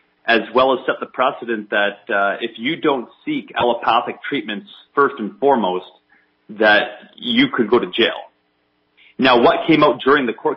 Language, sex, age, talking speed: English, male, 30-49, 170 wpm